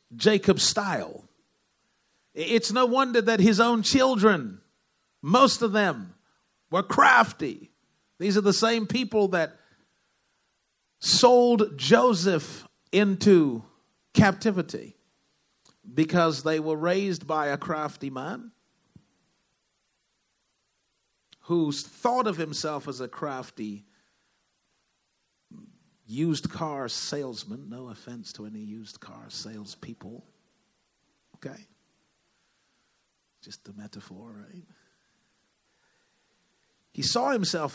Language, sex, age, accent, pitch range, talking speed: English, male, 50-69, American, 135-210 Hz, 90 wpm